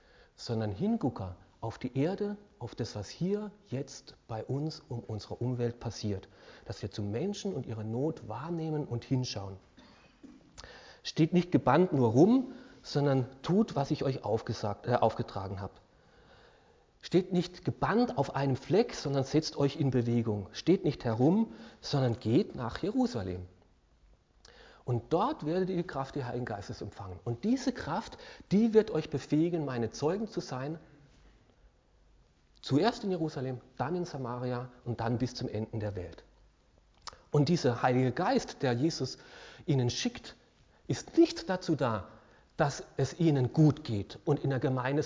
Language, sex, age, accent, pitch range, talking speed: German, male, 40-59, German, 115-165 Hz, 150 wpm